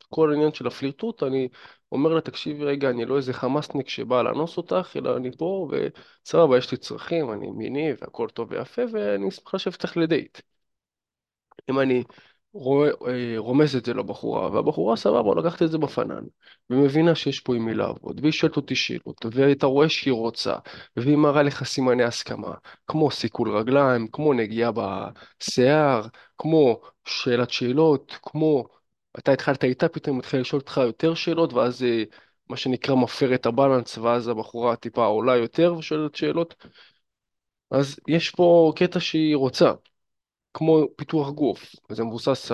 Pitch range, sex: 120-155 Hz, male